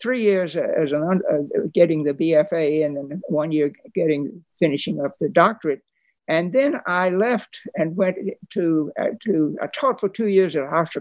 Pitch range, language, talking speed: 155-200 Hz, English, 180 wpm